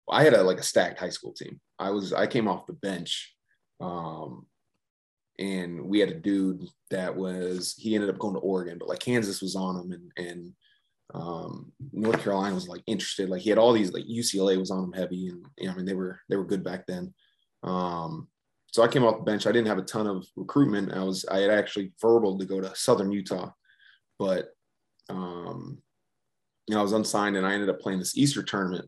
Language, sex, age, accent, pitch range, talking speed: English, male, 20-39, American, 90-100 Hz, 235 wpm